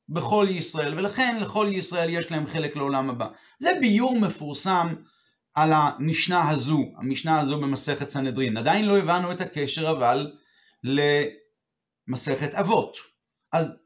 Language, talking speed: Hebrew, 125 wpm